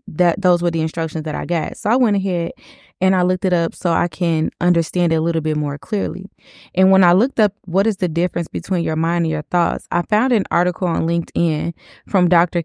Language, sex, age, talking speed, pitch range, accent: English, female, 20-39, 235 wpm, 160-195 Hz, American